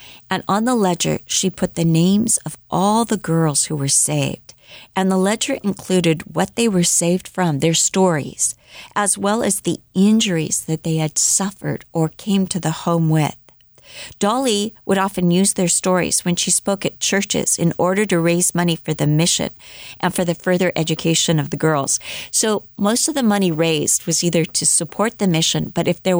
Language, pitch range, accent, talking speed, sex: English, 160-195 Hz, American, 190 wpm, female